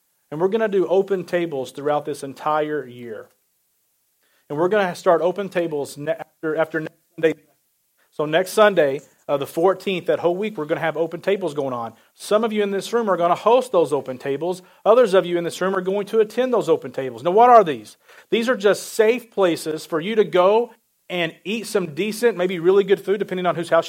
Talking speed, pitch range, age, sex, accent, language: 225 wpm, 165-215 Hz, 40-59, male, American, English